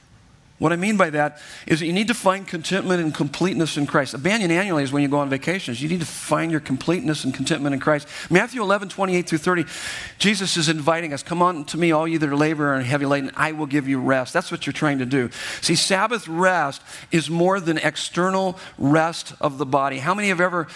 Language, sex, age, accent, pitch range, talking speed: English, male, 50-69, American, 145-180 Hz, 240 wpm